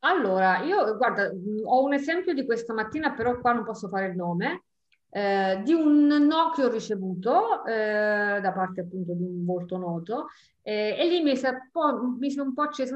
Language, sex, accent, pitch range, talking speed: Italian, female, native, 180-235 Hz, 210 wpm